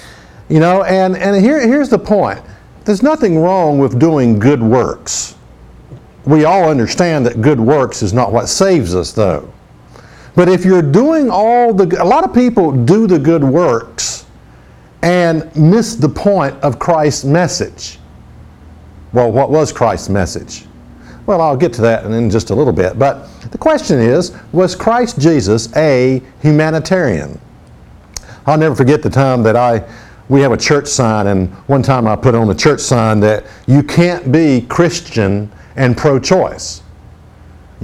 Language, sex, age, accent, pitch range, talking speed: English, male, 50-69, American, 110-165 Hz, 160 wpm